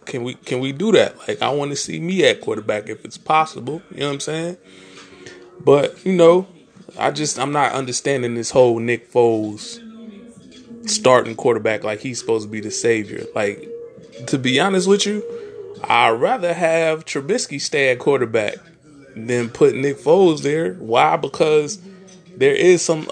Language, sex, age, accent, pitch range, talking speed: English, male, 20-39, American, 120-180 Hz, 170 wpm